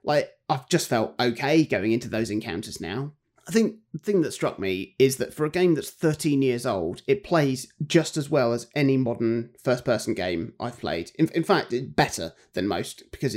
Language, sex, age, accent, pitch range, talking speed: English, male, 30-49, British, 125-155 Hz, 205 wpm